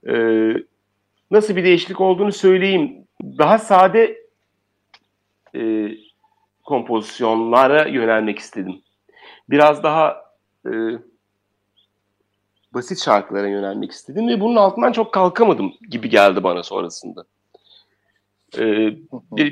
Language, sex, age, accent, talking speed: Turkish, male, 40-59, native, 90 wpm